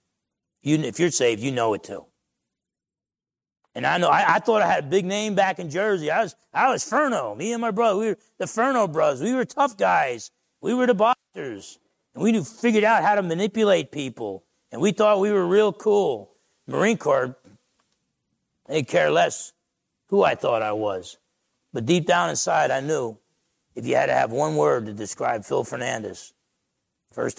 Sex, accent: male, American